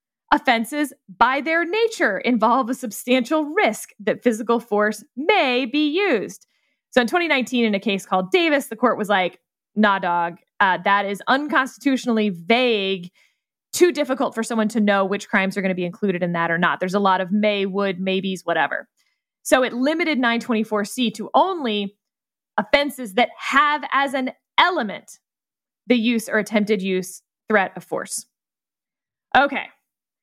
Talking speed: 155 wpm